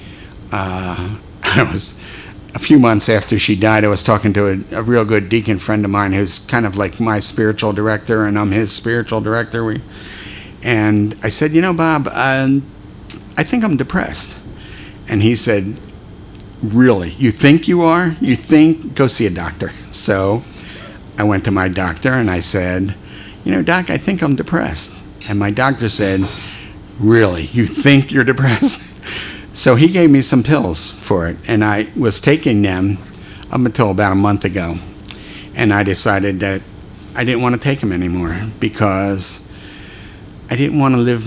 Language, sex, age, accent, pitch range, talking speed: English, male, 50-69, American, 100-115 Hz, 175 wpm